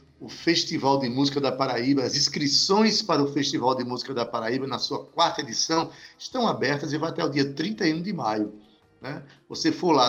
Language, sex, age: Portuguese, male, 60-79